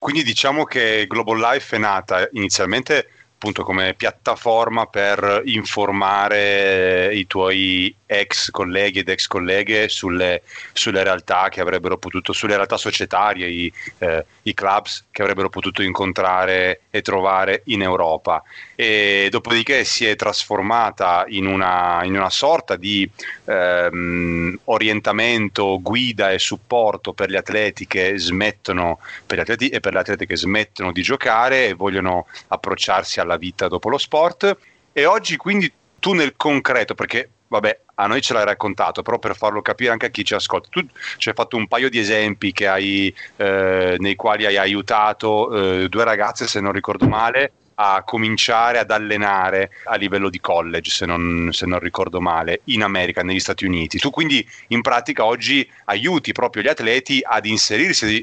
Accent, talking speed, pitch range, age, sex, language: native, 160 wpm, 95-110 Hz, 30-49, male, Italian